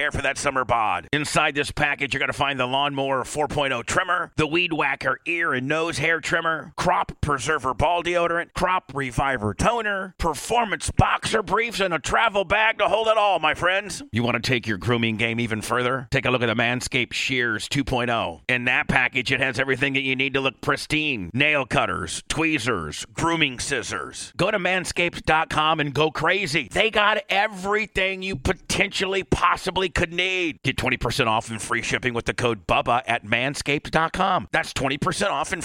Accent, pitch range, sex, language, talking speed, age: American, 125-165 Hz, male, English, 180 wpm, 40-59